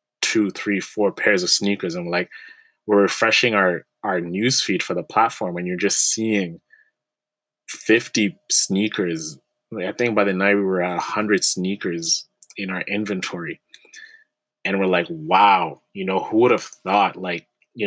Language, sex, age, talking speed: English, male, 20-39, 160 wpm